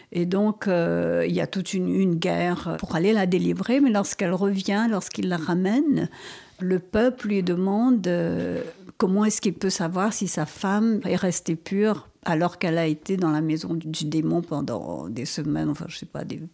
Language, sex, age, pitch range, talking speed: French, female, 50-69, 165-200 Hz, 195 wpm